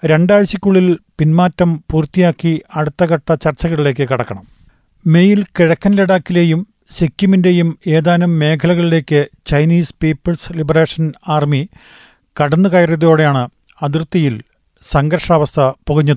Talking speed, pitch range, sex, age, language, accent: 80 wpm, 145-175 Hz, male, 40-59, Malayalam, native